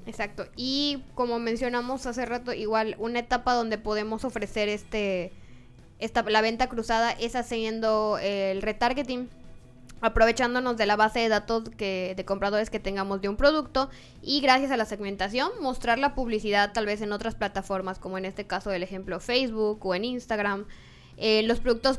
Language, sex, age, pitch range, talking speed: Spanish, female, 10-29, 200-235 Hz, 170 wpm